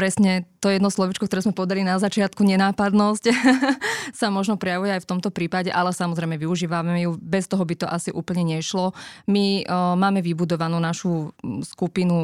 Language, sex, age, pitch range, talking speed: Slovak, female, 20-39, 175-195 Hz, 165 wpm